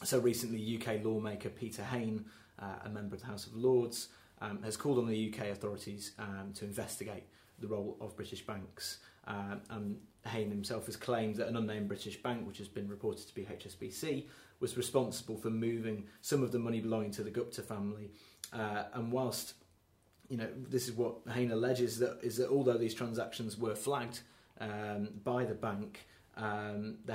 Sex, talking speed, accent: male, 180 wpm, British